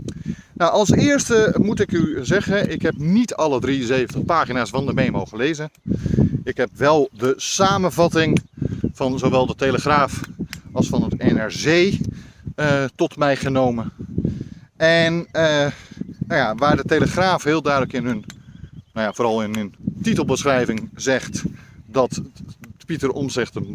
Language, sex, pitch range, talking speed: Dutch, male, 105-155 Hz, 140 wpm